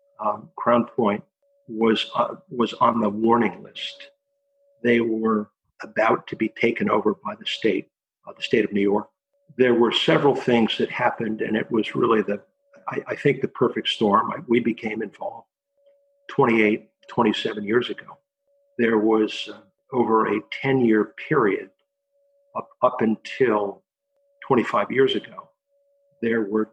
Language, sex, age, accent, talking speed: English, male, 50-69, American, 155 wpm